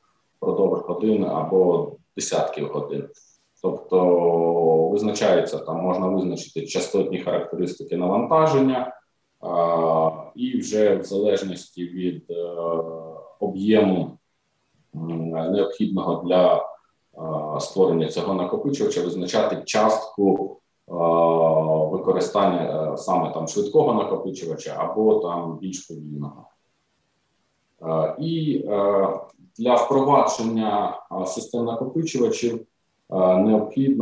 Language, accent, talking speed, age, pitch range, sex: Ukrainian, native, 65 wpm, 20-39, 85-110 Hz, male